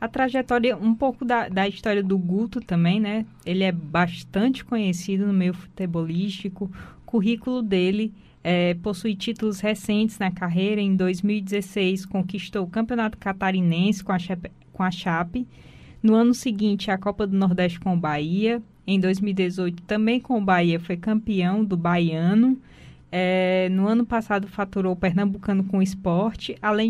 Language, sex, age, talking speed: Portuguese, female, 20-39, 155 wpm